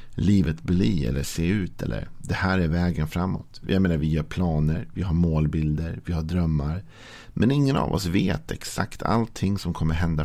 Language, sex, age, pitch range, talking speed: Swedish, male, 50-69, 80-100 Hz, 185 wpm